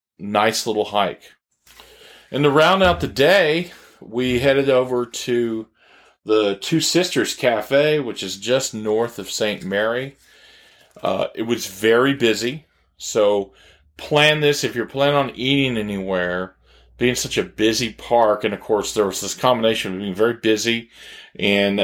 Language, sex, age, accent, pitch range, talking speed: English, male, 40-59, American, 100-125 Hz, 150 wpm